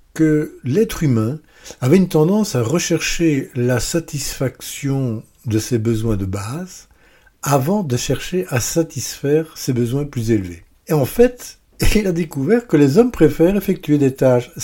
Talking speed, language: 150 wpm, French